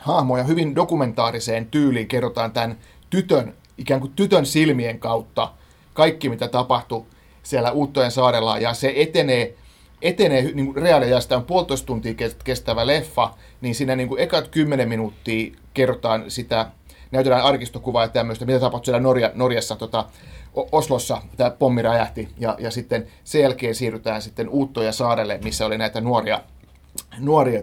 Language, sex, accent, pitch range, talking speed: Finnish, male, native, 110-135 Hz, 145 wpm